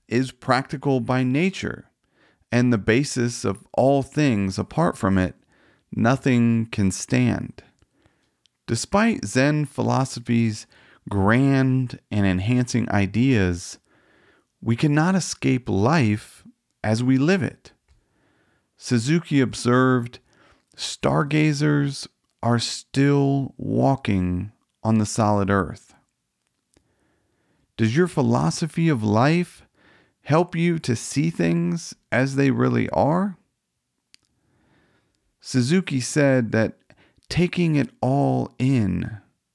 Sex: male